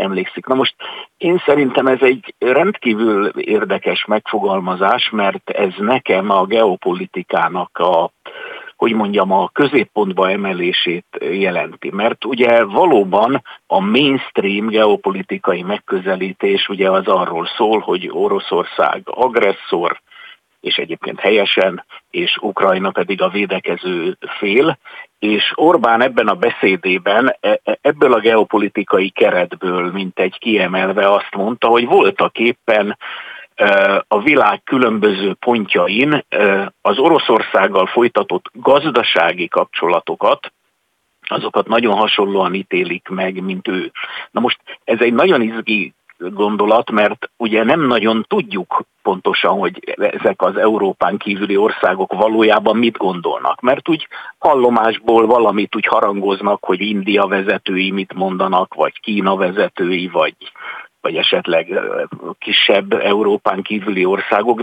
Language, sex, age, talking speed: Hungarian, male, 50-69, 110 wpm